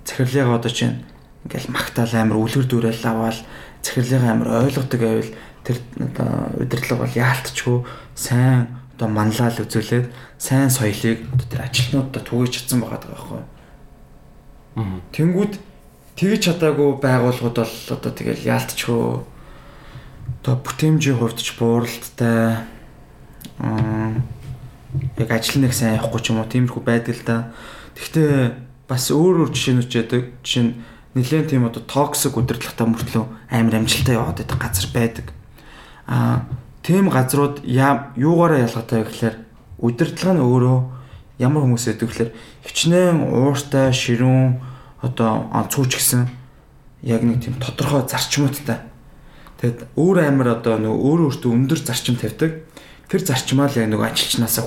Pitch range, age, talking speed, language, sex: 115-135 Hz, 20-39, 110 wpm, English, male